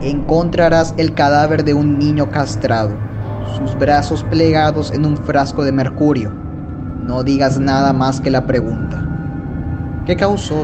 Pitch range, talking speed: 125-150 Hz, 135 wpm